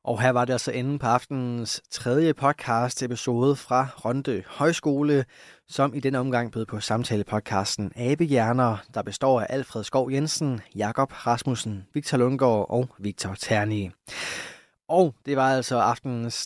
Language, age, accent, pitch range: Danish, 20-39, native, 115-135 Hz